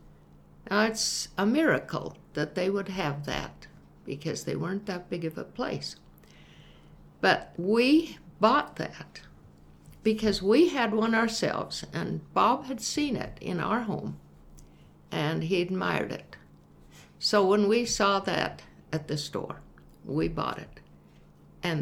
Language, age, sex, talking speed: English, 60-79, female, 140 wpm